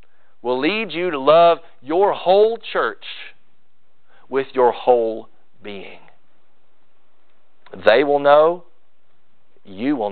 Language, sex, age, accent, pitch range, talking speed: English, male, 40-59, American, 110-150 Hz, 100 wpm